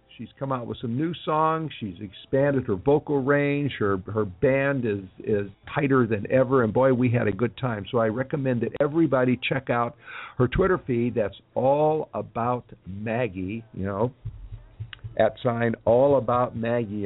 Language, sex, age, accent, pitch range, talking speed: English, male, 50-69, American, 110-135 Hz, 170 wpm